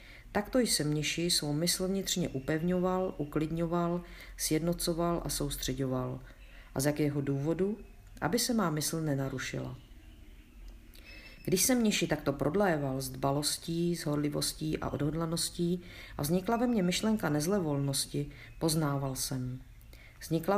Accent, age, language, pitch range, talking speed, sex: native, 50-69, Czech, 140-180 Hz, 115 wpm, female